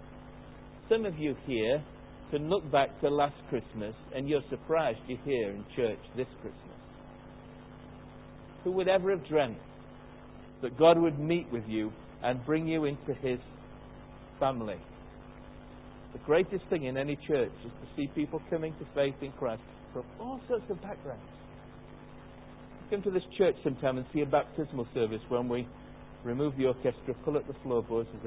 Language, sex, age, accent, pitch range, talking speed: English, male, 60-79, British, 125-155 Hz, 160 wpm